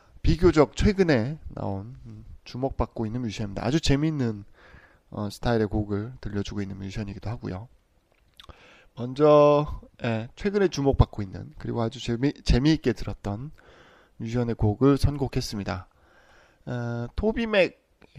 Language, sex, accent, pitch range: Korean, male, native, 105-140 Hz